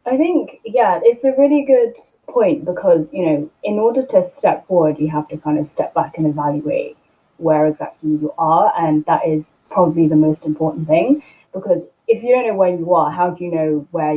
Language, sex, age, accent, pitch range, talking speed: English, female, 20-39, British, 155-190 Hz, 210 wpm